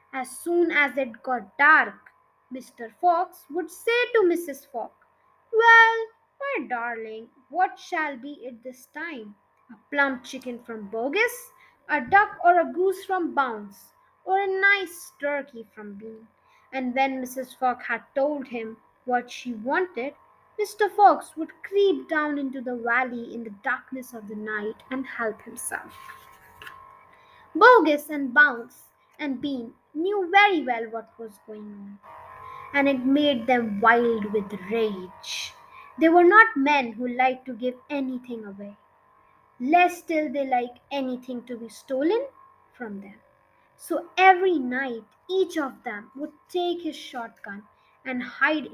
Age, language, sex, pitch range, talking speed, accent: 20-39, English, female, 240-350 Hz, 145 wpm, Indian